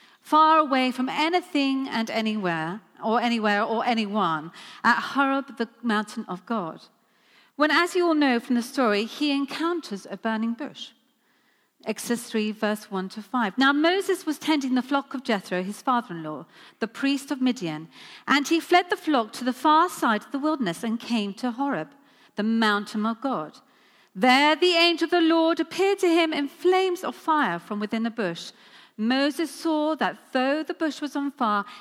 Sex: female